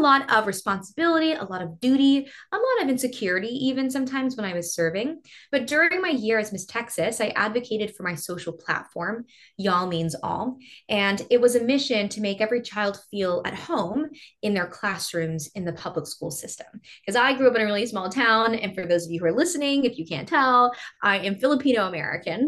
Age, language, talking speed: 20-39, English, 205 wpm